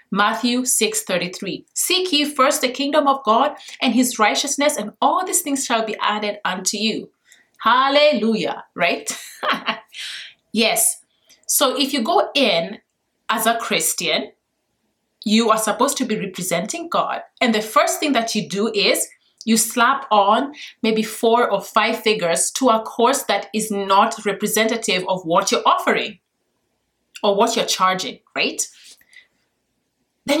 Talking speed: 145 wpm